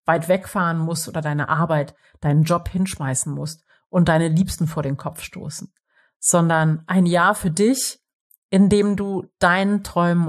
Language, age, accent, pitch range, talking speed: German, 30-49, German, 155-190 Hz, 155 wpm